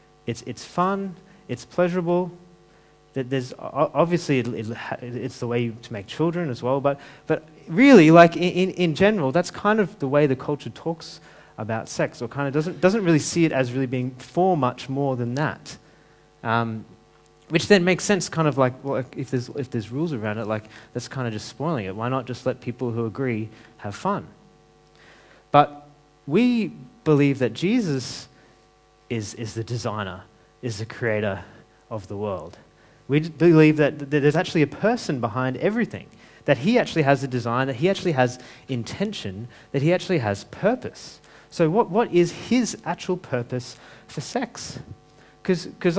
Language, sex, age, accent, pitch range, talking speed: English, male, 30-49, Australian, 120-175 Hz, 175 wpm